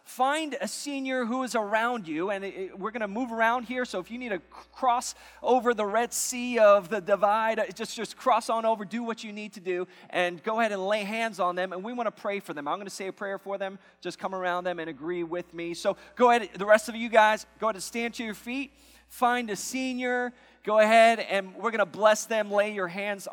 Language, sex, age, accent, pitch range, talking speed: English, male, 30-49, American, 130-215 Hz, 250 wpm